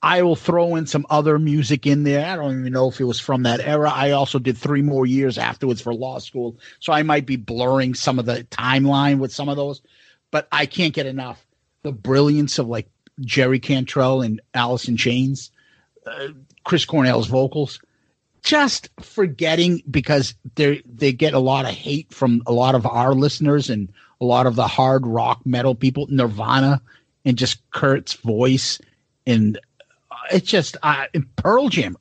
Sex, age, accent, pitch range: male, 40-59, American, 125-150 Hz